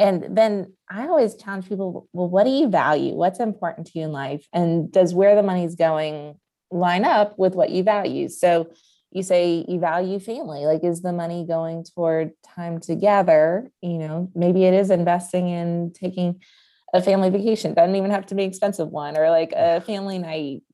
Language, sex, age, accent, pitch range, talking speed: English, female, 20-39, American, 170-215 Hz, 190 wpm